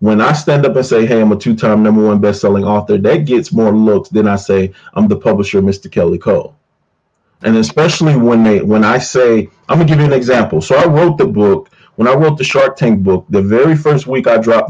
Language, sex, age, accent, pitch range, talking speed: English, male, 30-49, American, 100-140 Hz, 235 wpm